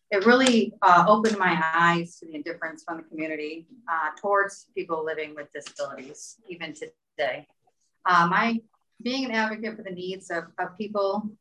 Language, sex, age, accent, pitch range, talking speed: English, female, 30-49, American, 165-195 Hz, 165 wpm